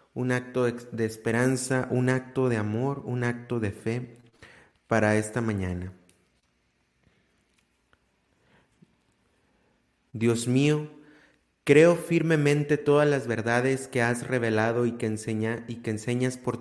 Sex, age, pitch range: male, 30-49, 110-130 Hz